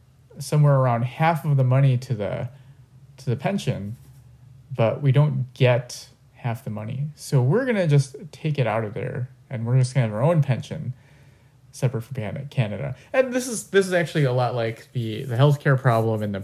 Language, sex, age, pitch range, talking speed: English, male, 30-49, 120-140 Hz, 200 wpm